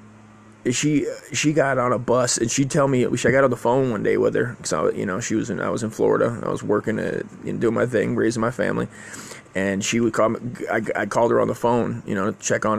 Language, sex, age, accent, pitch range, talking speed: English, male, 20-39, American, 115-175 Hz, 290 wpm